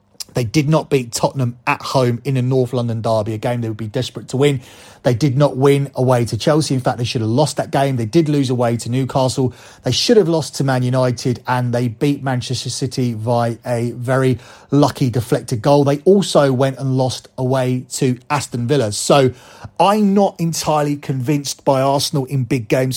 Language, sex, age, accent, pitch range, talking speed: English, male, 30-49, British, 125-155 Hz, 205 wpm